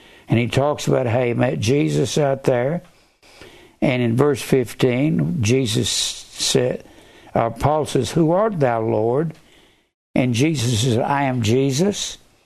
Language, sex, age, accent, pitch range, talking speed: English, male, 60-79, American, 130-180 Hz, 140 wpm